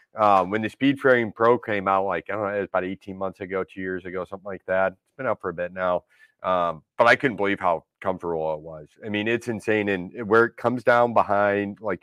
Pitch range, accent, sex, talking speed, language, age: 95-135 Hz, American, male, 250 wpm, English, 30-49